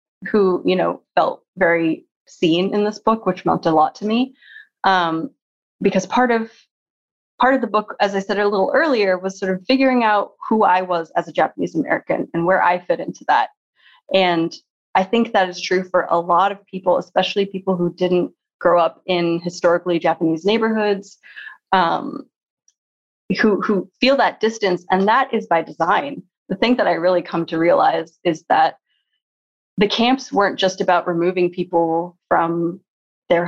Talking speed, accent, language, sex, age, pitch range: 175 wpm, American, English, female, 20-39, 170-210 Hz